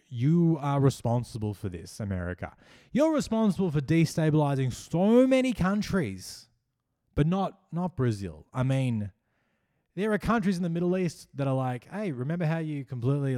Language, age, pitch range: English, 20-39, 105-150 Hz